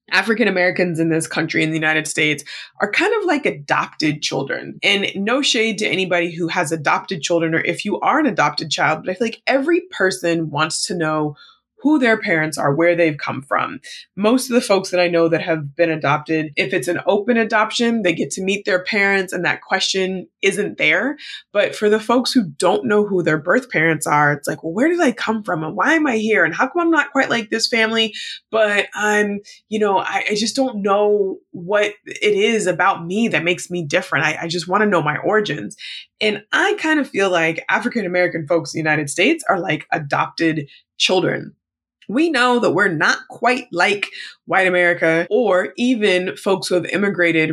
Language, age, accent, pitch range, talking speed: English, 20-39, American, 170-235 Hz, 210 wpm